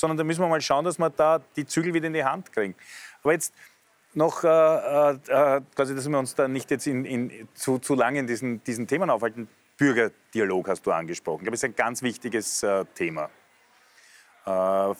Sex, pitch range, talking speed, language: male, 115-155 Hz, 210 wpm, German